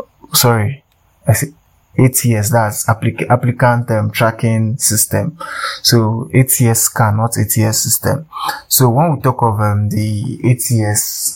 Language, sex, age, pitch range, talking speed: English, male, 20-39, 105-120 Hz, 125 wpm